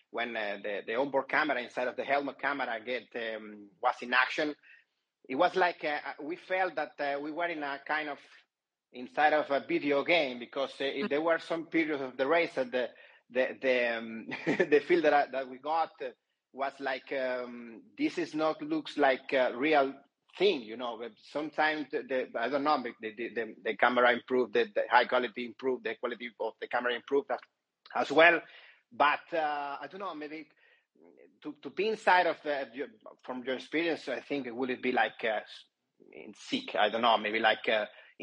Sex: male